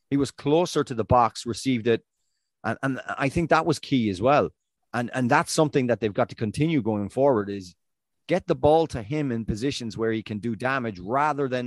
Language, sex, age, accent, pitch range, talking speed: English, male, 30-49, Irish, 105-135 Hz, 220 wpm